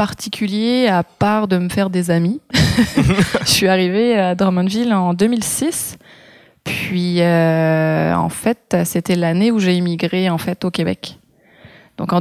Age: 20-39